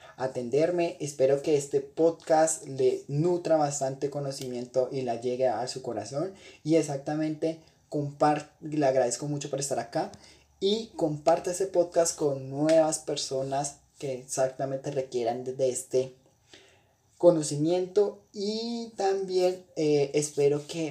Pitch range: 130-160 Hz